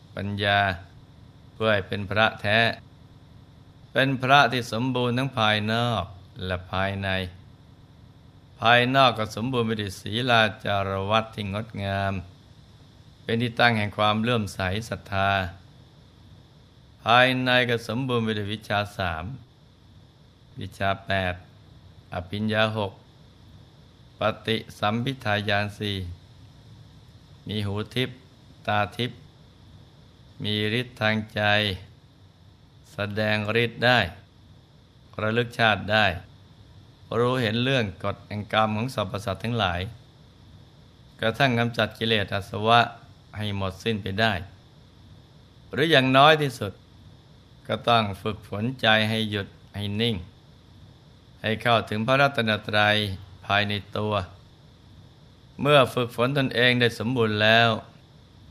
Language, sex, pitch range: Thai, male, 100-125 Hz